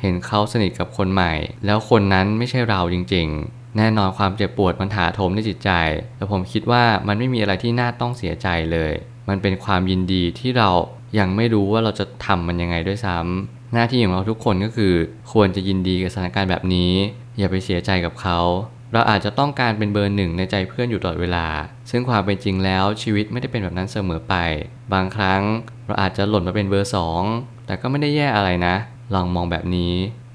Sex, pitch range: male, 95-115 Hz